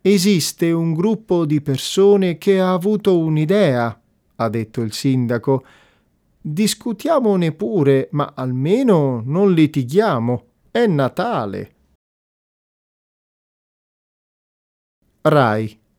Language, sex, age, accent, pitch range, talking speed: Italian, male, 40-59, native, 120-170 Hz, 85 wpm